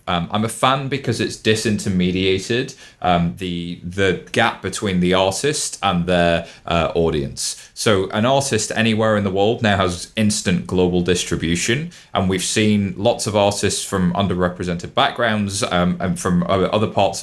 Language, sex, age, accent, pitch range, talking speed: English, male, 30-49, British, 90-110 Hz, 155 wpm